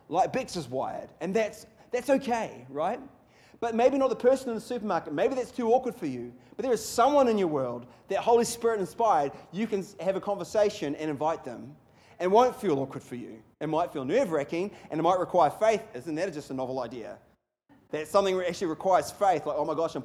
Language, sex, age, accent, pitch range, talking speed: English, male, 30-49, Australian, 165-235 Hz, 215 wpm